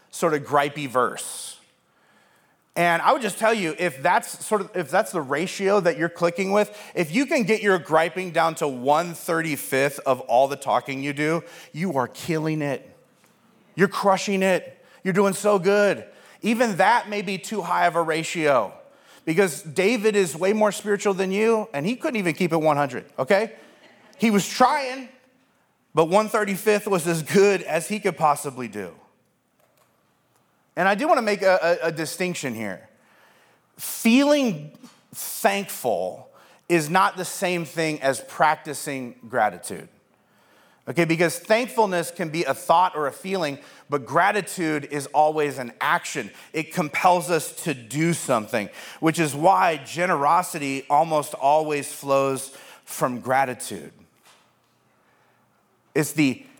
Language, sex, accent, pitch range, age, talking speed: English, male, American, 145-200 Hz, 30-49, 150 wpm